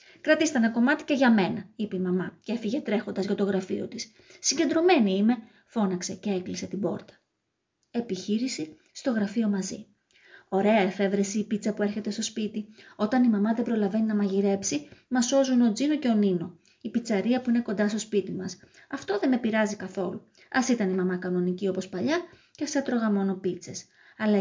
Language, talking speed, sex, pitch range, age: Greek, 185 wpm, female, 200-255 Hz, 20-39